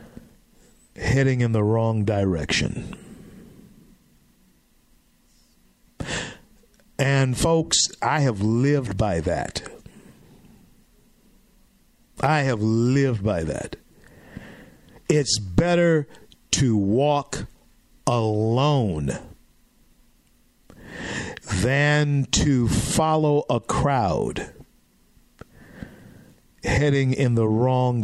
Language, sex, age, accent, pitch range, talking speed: English, male, 50-69, American, 125-165 Hz, 65 wpm